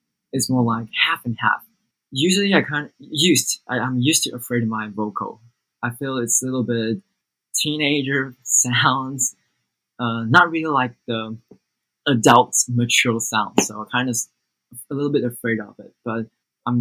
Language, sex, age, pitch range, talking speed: English, male, 20-39, 110-140 Hz, 170 wpm